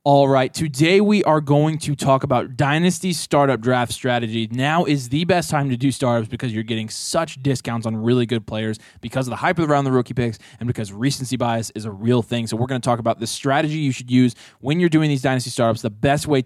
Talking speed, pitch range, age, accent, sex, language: 245 wpm, 120-150 Hz, 20-39, American, male, English